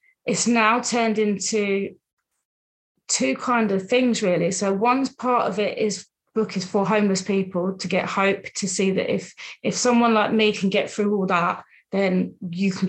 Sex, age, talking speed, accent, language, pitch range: female, 30-49, 180 wpm, British, English, 190-230 Hz